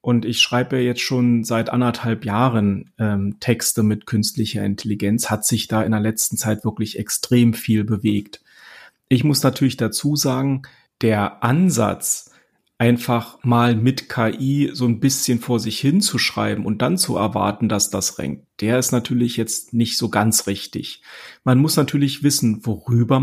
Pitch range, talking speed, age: 110-130 Hz, 160 wpm, 40-59